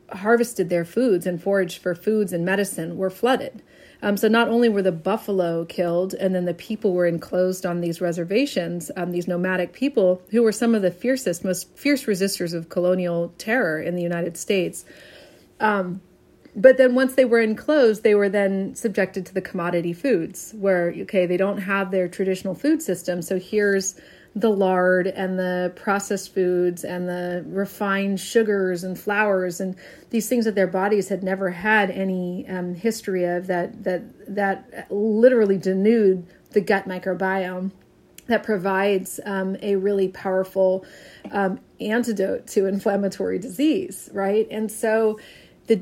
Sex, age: female, 30-49